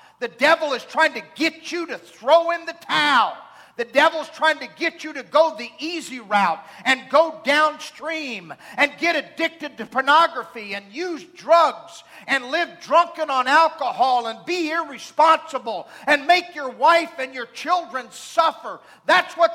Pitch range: 205-315 Hz